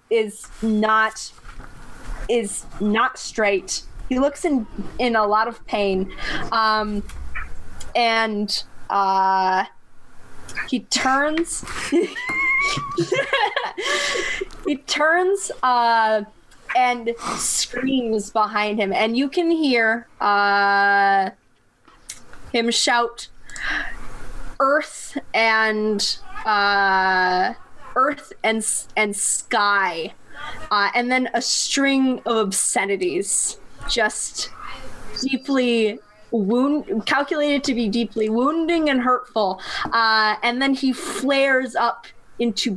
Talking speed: 85 wpm